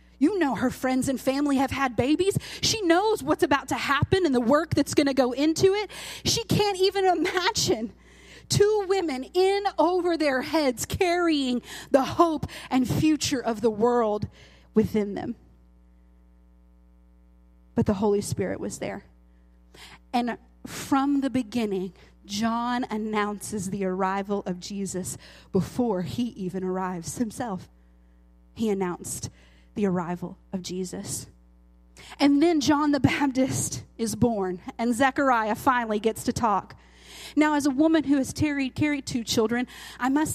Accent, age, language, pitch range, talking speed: American, 30-49, English, 185-300 Hz, 145 wpm